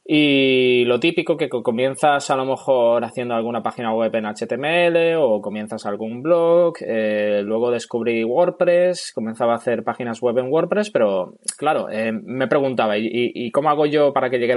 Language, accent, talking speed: Spanish, Spanish, 175 wpm